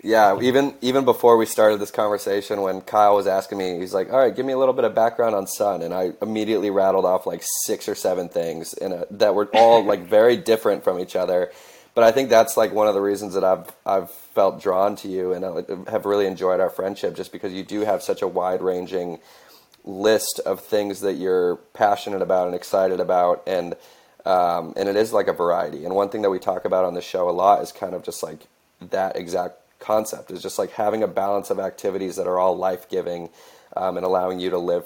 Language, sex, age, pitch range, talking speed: English, male, 20-39, 95-135 Hz, 235 wpm